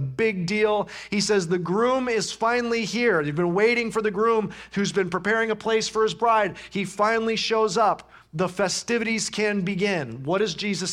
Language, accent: English, American